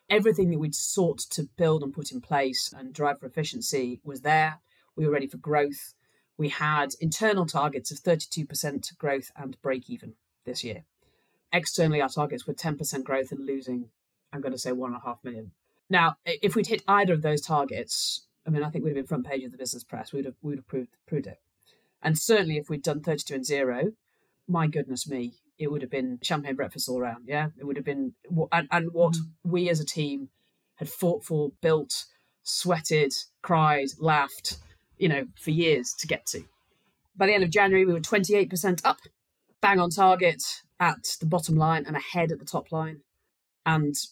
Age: 30-49